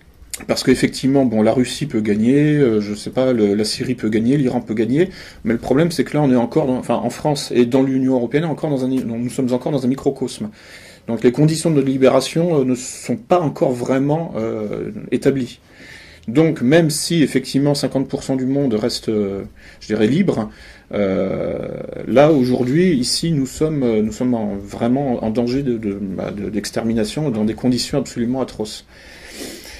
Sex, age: male, 40-59